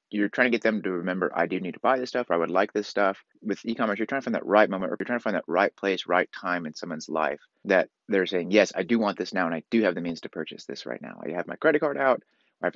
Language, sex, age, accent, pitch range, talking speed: English, male, 30-49, American, 90-115 Hz, 335 wpm